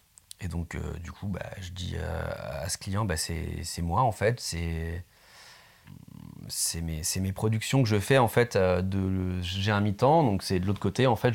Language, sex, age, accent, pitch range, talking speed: French, male, 30-49, French, 95-125 Hz, 220 wpm